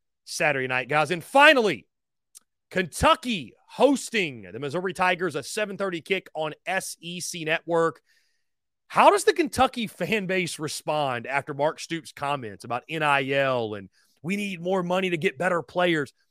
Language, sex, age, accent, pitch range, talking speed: English, male, 30-49, American, 150-205 Hz, 140 wpm